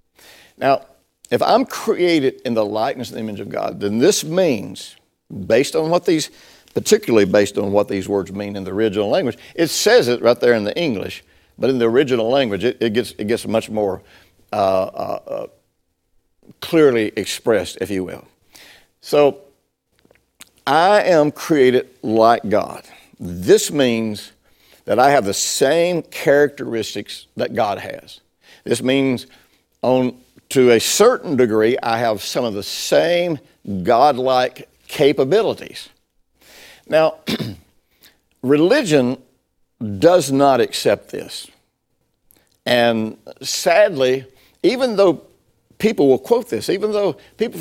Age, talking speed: 60-79, 130 wpm